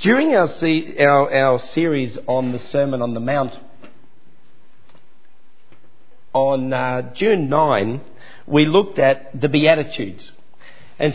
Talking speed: 115 wpm